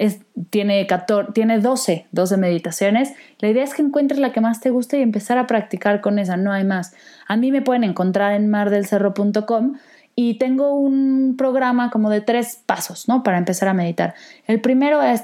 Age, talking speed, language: 20-39, 195 wpm, Spanish